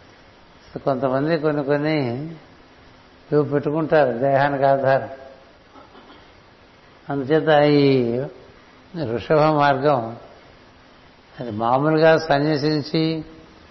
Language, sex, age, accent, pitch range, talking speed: Telugu, male, 60-79, native, 130-150 Hz, 55 wpm